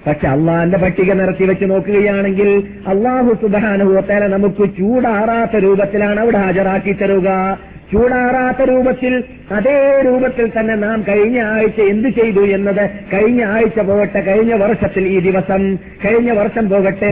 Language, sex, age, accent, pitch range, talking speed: Malayalam, male, 50-69, native, 195-225 Hz, 120 wpm